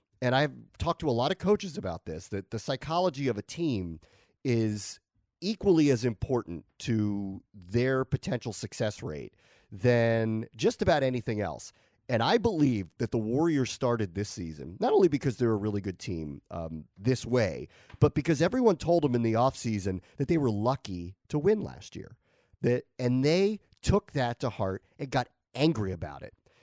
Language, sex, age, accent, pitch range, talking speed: English, male, 30-49, American, 110-150 Hz, 175 wpm